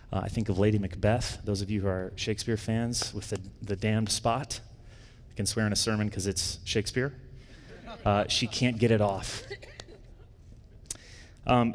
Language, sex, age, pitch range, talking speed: English, male, 30-49, 100-115 Hz, 175 wpm